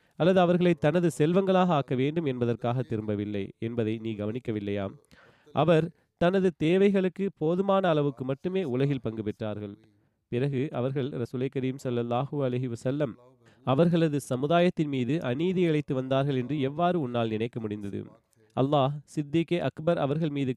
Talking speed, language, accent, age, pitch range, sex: 125 wpm, Tamil, native, 30-49, 120-160 Hz, male